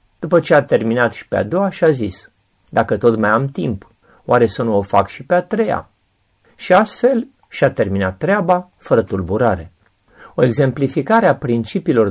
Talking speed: 165 wpm